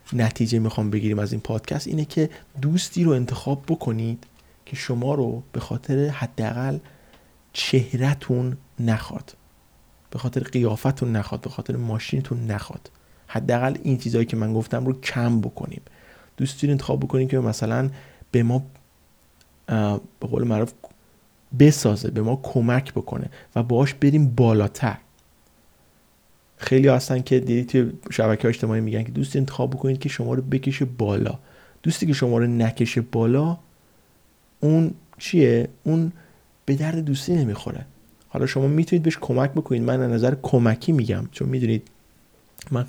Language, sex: Persian, male